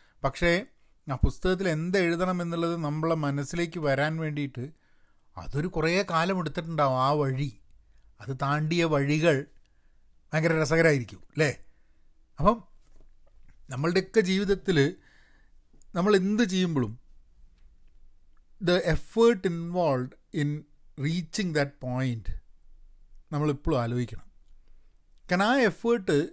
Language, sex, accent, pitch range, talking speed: Malayalam, male, native, 130-180 Hz, 85 wpm